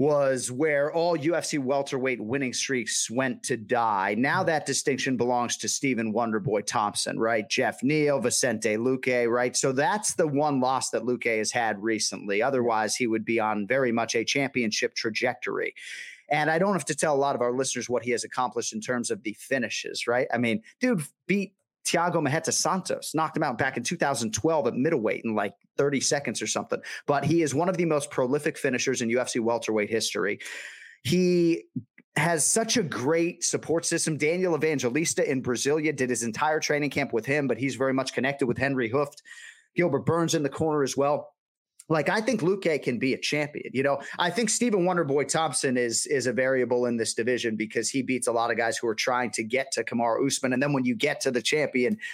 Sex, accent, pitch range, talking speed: male, American, 125-155 Hz, 205 wpm